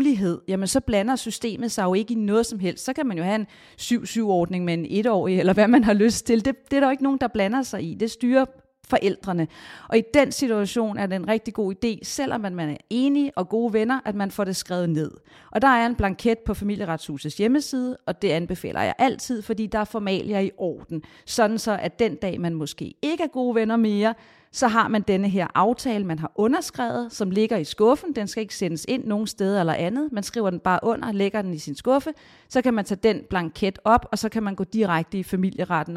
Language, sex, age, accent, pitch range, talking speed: Danish, female, 40-59, native, 190-235 Hz, 235 wpm